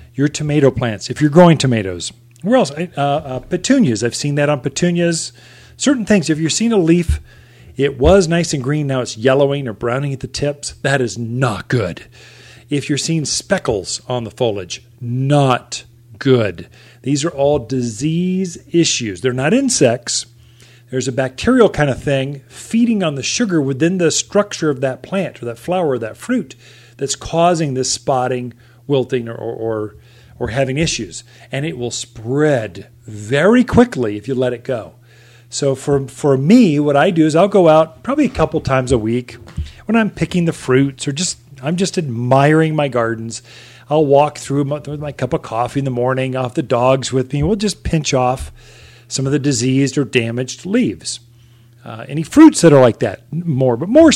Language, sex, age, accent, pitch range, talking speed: English, male, 40-59, American, 120-160 Hz, 185 wpm